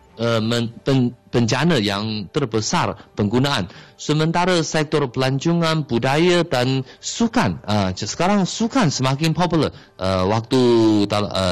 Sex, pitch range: male, 115-165 Hz